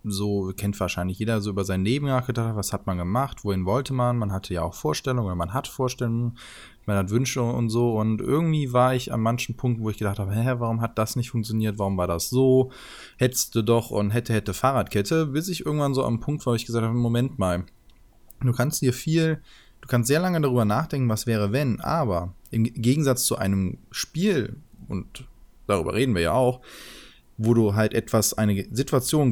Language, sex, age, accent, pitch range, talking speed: German, male, 20-39, German, 105-130 Hz, 205 wpm